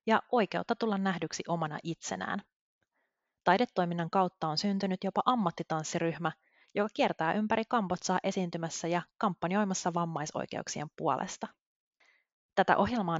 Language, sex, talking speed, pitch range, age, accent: Finnish, female, 105 wpm, 170-210 Hz, 30-49, native